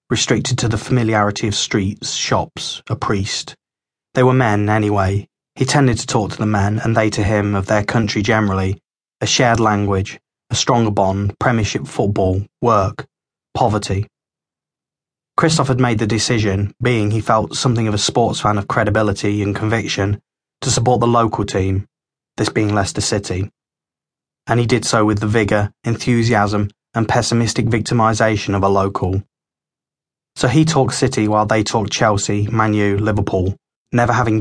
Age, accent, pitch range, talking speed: 20-39, British, 100-120 Hz, 160 wpm